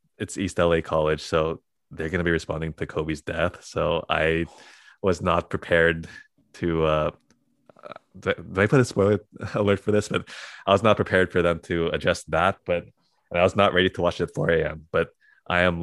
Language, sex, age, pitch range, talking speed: English, male, 20-39, 80-95 Hz, 195 wpm